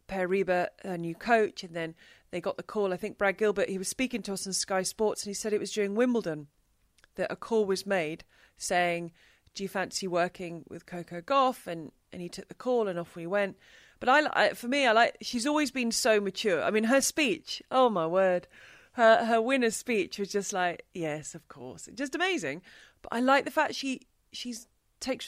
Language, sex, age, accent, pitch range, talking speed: English, female, 30-49, British, 185-255 Hz, 220 wpm